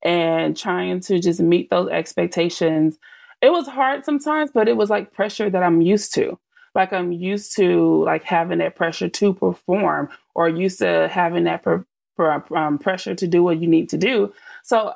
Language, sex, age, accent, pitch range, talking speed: English, female, 20-39, American, 165-215 Hz, 180 wpm